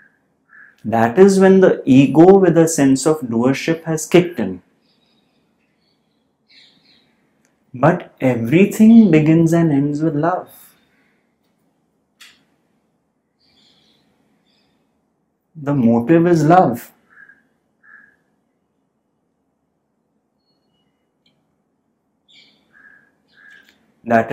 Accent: Indian